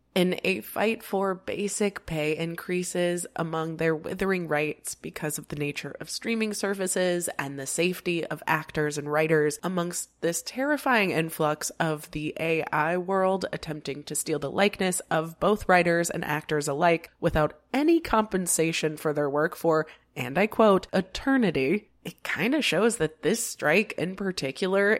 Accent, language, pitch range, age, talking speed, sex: American, English, 155-195 Hz, 20-39, 150 wpm, female